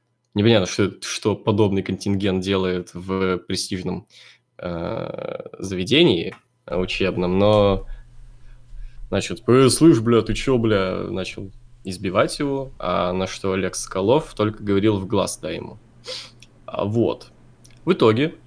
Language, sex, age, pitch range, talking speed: Russian, male, 20-39, 100-120 Hz, 115 wpm